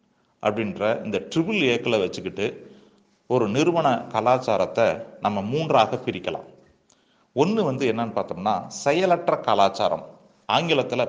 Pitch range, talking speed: 120-165 Hz, 95 wpm